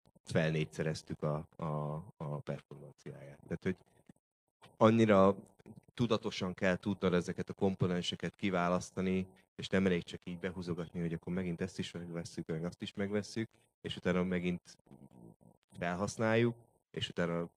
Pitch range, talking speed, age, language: 80-95 Hz, 125 wpm, 30-49, Hungarian